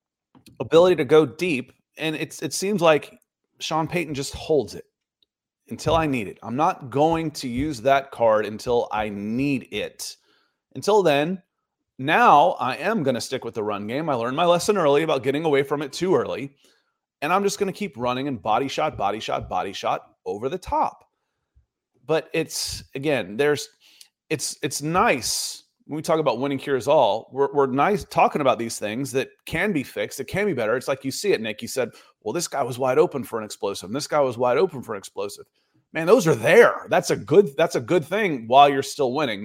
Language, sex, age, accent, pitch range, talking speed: English, male, 30-49, American, 130-175 Hz, 215 wpm